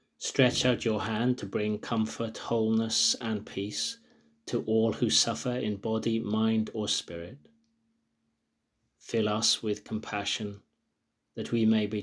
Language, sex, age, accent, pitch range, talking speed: English, male, 30-49, British, 100-115 Hz, 135 wpm